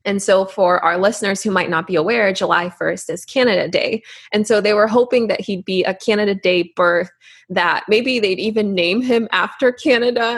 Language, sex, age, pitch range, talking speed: English, female, 20-39, 180-230 Hz, 200 wpm